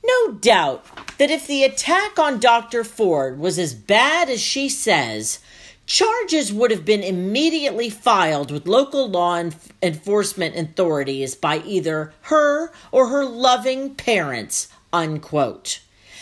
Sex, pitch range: female, 170-280 Hz